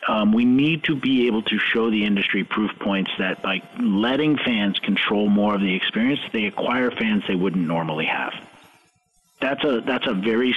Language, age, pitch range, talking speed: English, 40-59, 100-145 Hz, 180 wpm